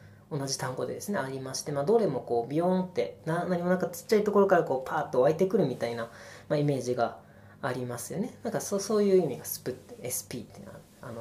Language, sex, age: Japanese, female, 20-39